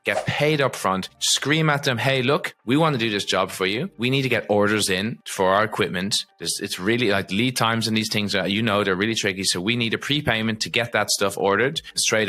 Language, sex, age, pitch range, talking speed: English, male, 20-39, 95-120 Hz, 250 wpm